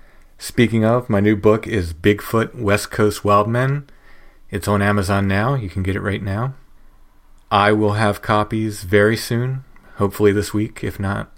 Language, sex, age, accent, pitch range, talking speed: English, male, 30-49, American, 95-110 Hz, 165 wpm